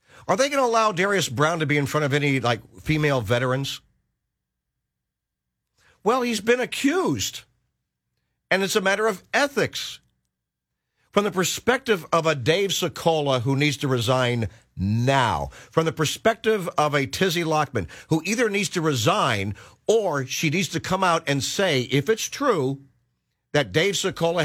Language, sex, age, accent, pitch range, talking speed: English, male, 50-69, American, 115-165 Hz, 155 wpm